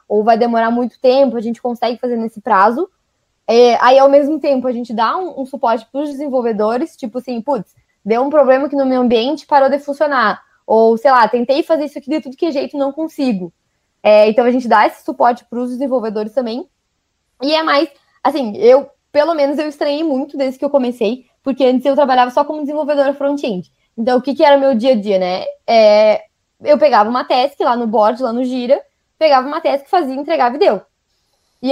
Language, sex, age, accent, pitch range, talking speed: Portuguese, female, 20-39, Brazilian, 235-285 Hz, 215 wpm